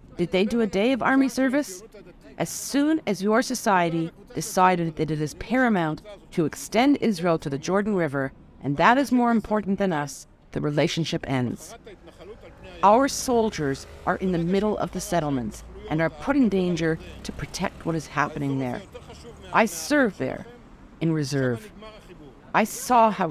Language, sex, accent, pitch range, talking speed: English, female, American, 145-210 Hz, 160 wpm